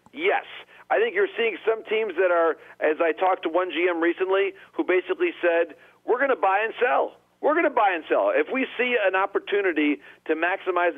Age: 40-59